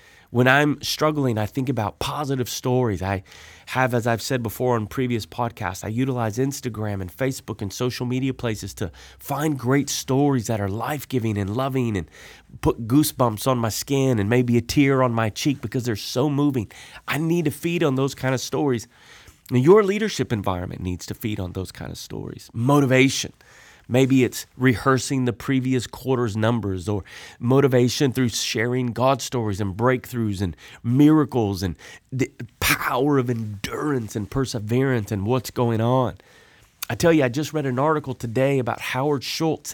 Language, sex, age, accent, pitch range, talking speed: English, male, 30-49, American, 110-135 Hz, 170 wpm